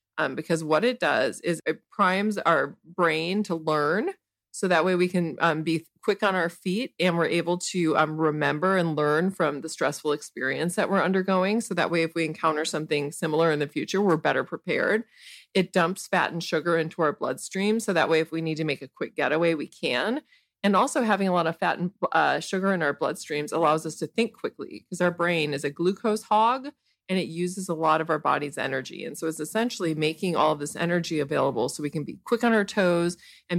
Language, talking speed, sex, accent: English, 225 wpm, female, American